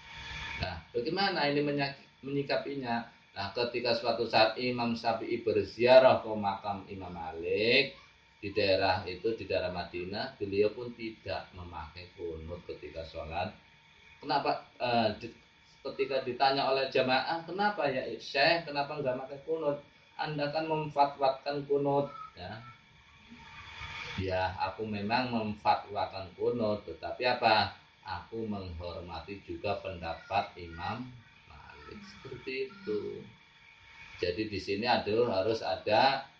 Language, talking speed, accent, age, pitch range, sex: Indonesian, 115 wpm, native, 20-39, 90-140 Hz, male